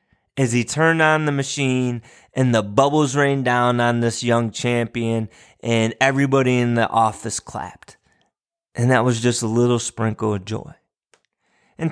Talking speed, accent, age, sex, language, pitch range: 155 wpm, American, 20-39, male, English, 115-145 Hz